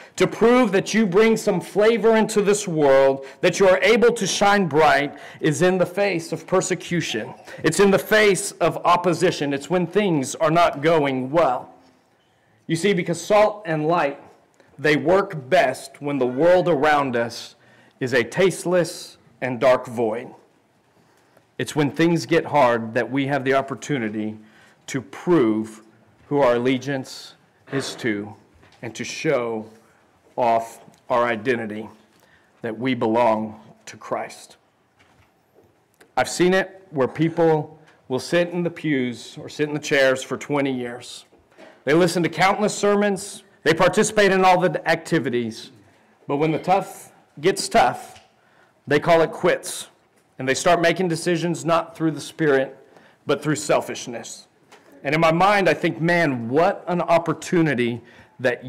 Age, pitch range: 40-59, 130-180 Hz